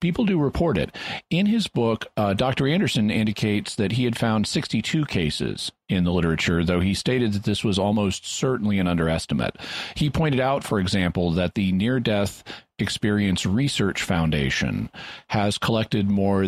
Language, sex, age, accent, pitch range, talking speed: English, male, 40-59, American, 95-115 Hz, 165 wpm